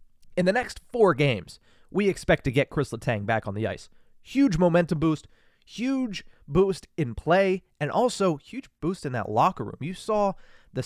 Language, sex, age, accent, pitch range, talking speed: English, male, 30-49, American, 115-180 Hz, 180 wpm